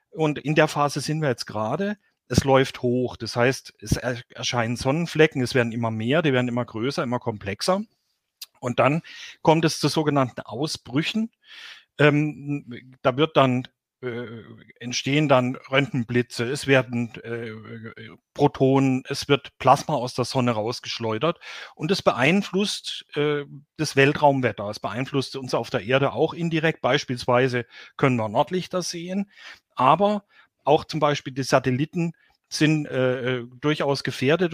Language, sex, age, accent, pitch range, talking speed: German, male, 40-59, German, 125-160 Hz, 140 wpm